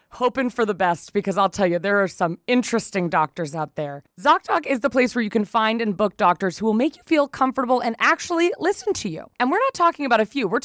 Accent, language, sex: American, English, female